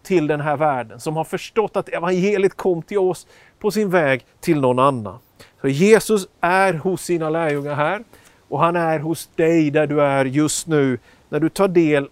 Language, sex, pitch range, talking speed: Swedish, male, 140-180 Hz, 195 wpm